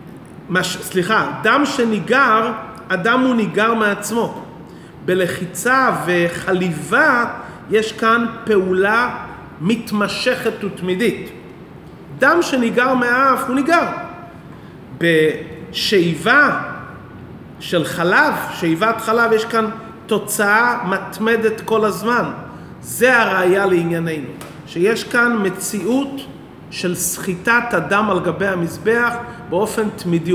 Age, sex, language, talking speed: 40-59, male, Hebrew, 90 wpm